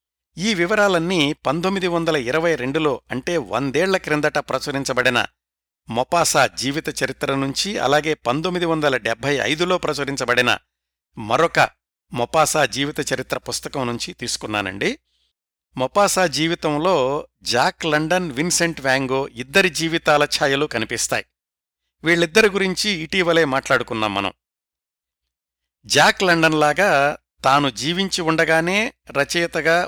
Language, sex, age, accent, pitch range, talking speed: Telugu, male, 60-79, native, 120-165 Hz, 100 wpm